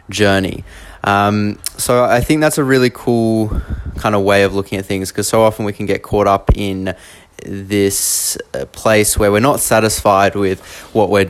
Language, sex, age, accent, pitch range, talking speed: English, male, 20-39, Australian, 95-105 Hz, 180 wpm